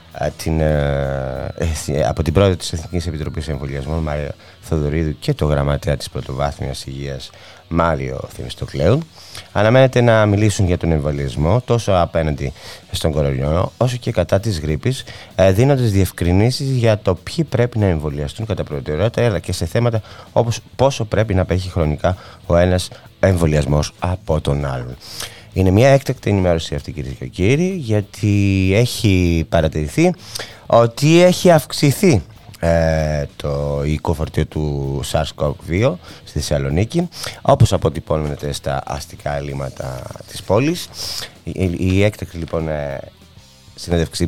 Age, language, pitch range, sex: 30-49, Greek, 75-110 Hz, male